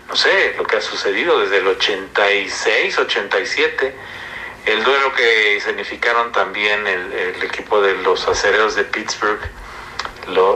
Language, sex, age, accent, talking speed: Spanish, male, 50-69, Mexican, 130 wpm